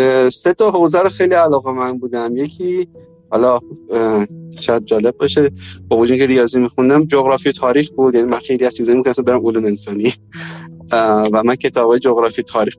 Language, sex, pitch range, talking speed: Persian, male, 115-135 Hz, 170 wpm